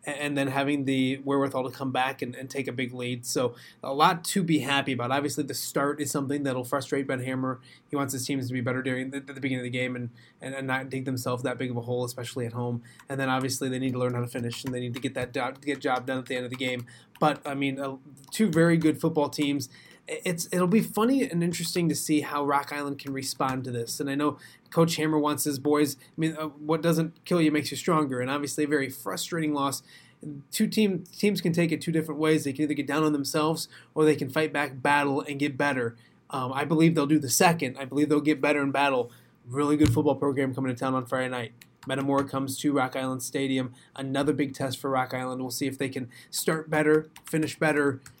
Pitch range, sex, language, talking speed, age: 130-150 Hz, male, English, 255 wpm, 20-39